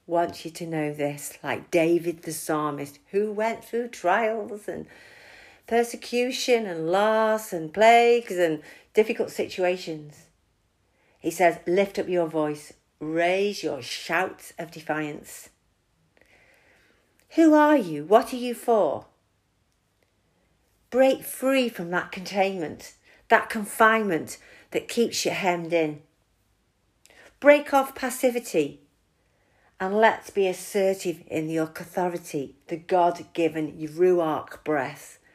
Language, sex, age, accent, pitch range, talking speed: English, female, 50-69, British, 150-200 Hz, 110 wpm